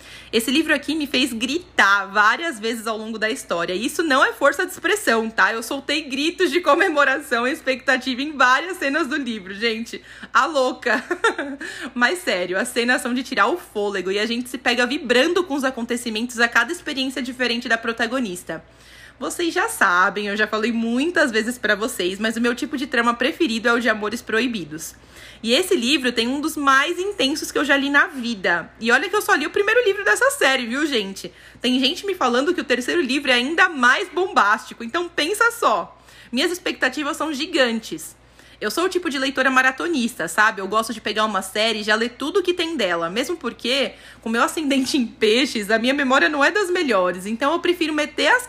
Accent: Brazilian